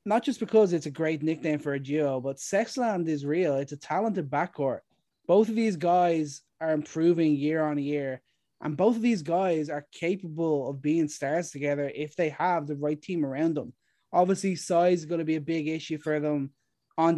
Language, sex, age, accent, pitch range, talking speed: English, male, 20-39, Irish, 150-180 Hz, 205 wpm